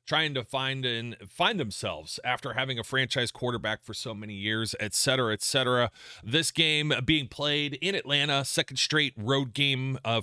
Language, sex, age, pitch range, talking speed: English, male, 30-49, 120-140 Hz, 175 wpm